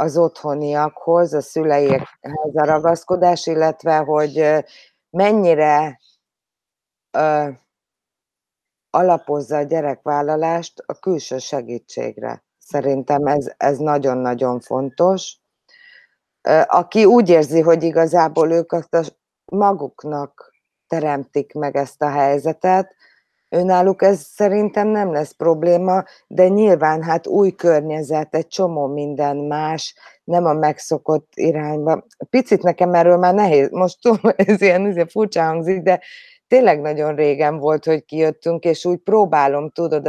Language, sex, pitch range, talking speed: Hungarian, female, 150-180 Hz, 115 wpm